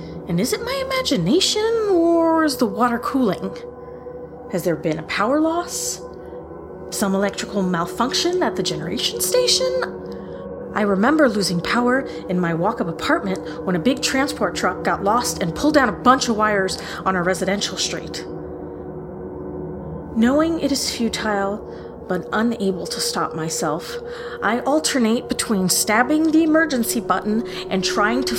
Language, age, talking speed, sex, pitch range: English, 30-49, 145 wpm, female, 185-275 Hz